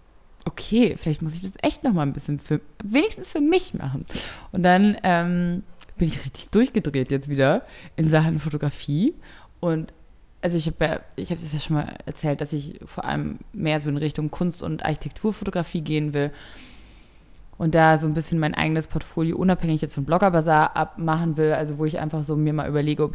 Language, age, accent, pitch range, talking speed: German, 20-39, German, 145-175 Hz, 195 wpm